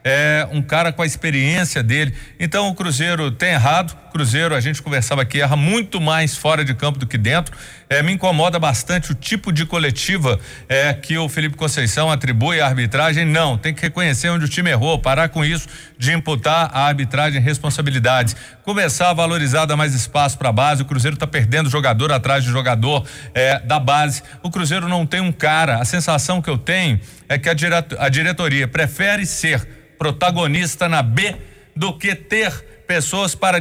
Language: Portuguese